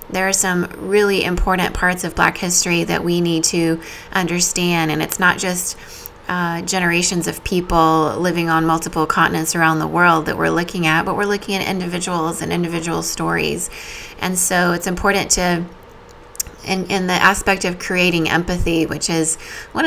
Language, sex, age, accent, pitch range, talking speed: English, female, 20-39, American, 165-190 Hz, 165 wpm